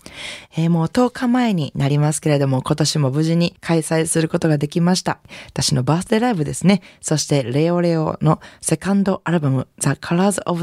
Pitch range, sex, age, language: 140-175 Hz, female, 20-39, Japanese